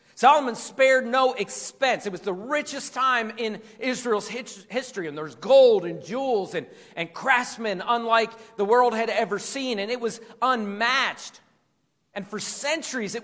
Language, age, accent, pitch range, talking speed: English, 40-59, American, 210-275 Hz, 160 wpm